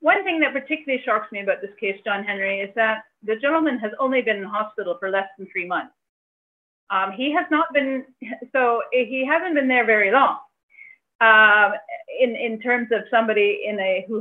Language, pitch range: English, 195-250 Hz